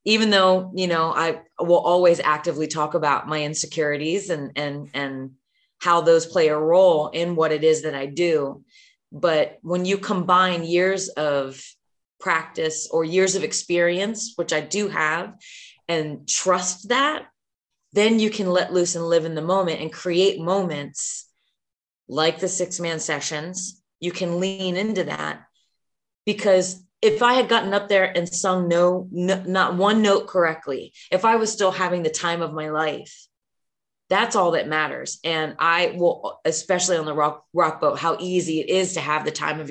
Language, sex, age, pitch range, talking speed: English, female, 30-49, 155-185 Hz, 175 wpm